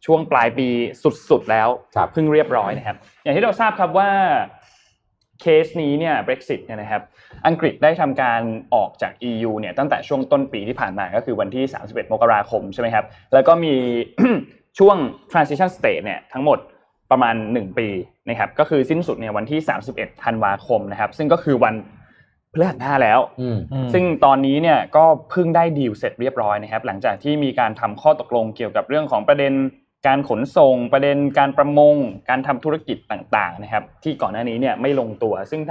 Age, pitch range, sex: 20-39, 120-155 Hz, male